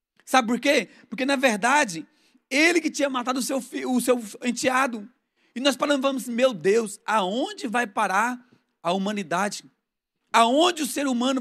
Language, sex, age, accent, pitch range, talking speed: Portuguese, male, 40-59, Brazilian, 235-280 Hz, 145 wpm